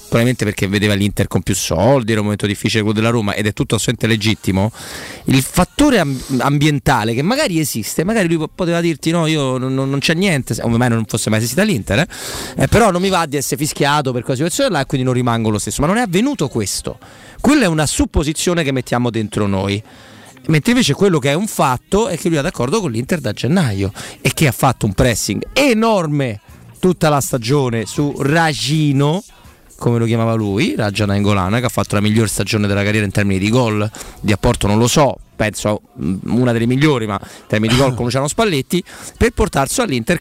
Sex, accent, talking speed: male, native, 215 wpm